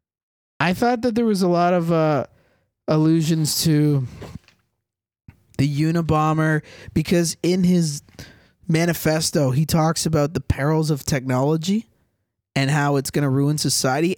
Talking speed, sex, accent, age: 130 wpm, male, American, 20-39